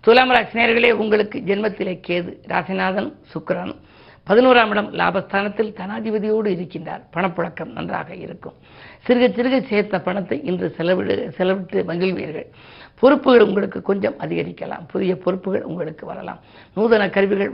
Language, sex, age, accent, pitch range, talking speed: Tamil, female, 50-69, native, 185-225 Hz, 115 wpm